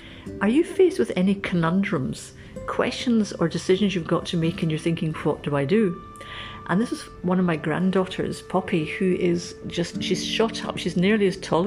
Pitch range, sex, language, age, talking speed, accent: 160-190 Hz, female, English, 50-69, 195 wpm, British